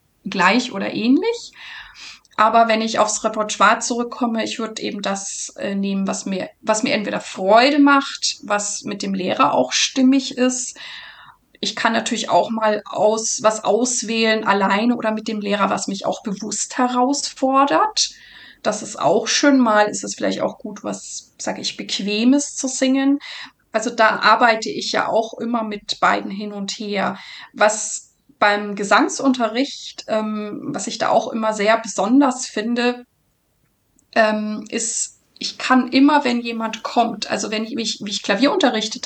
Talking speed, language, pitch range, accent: 155 wpm, German, 215-260 Hz, German